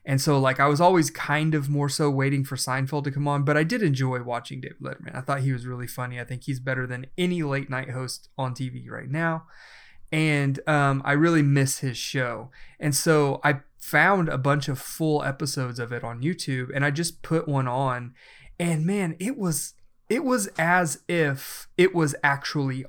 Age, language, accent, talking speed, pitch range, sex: 30-49, English, American, 205 wpm, 130-160 Hz, male